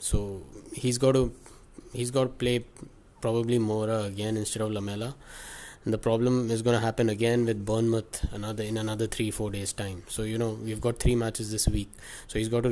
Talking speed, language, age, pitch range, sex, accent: 210 wpm, English, 20-39, 105-120 Hz, male, Indian